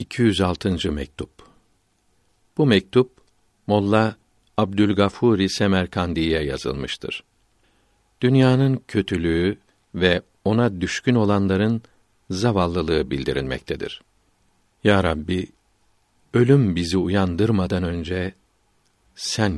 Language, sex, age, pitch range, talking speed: Turkish, male, 60-79, 90-105 Hz, 70 wpm